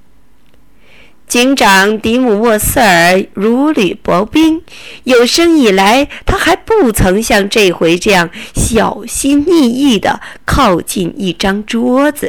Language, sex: Chinese, female